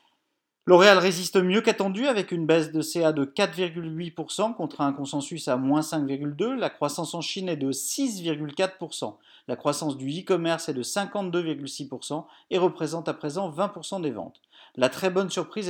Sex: male